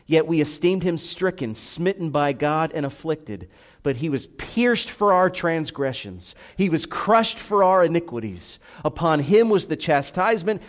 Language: English